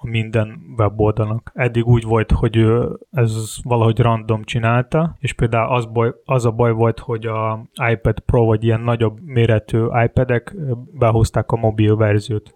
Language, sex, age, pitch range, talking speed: Hungarian, male, 20-39, 110-125 Hz, 155 wpm